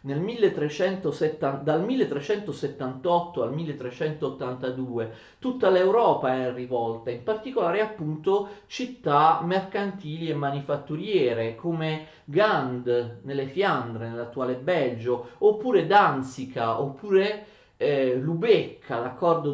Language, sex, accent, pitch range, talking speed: Italian, male, native, 125-185 Hz, 90 wpm